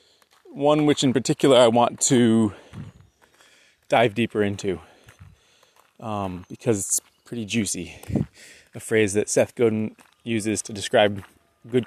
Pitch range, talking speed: 105-125 Hz, 120 wpm